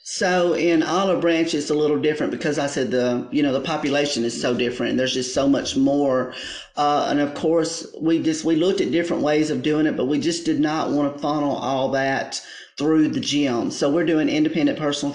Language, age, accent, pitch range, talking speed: English, 40-59, American, 135-155 Hz, 225 wpm